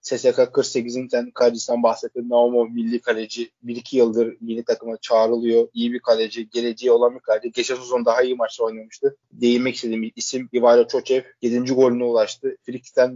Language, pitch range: Turkish, 115-130 Hz